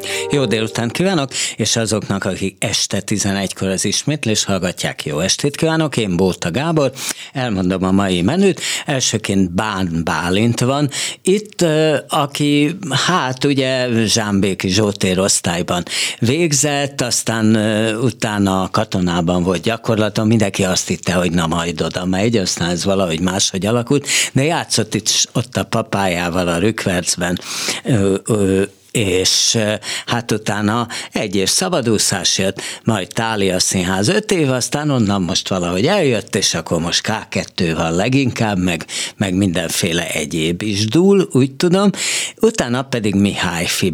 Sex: male